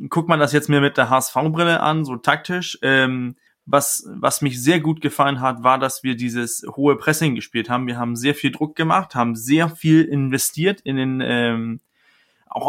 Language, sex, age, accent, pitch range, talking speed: German, male, 30-49, German, 135-165 Hz, 200 wpm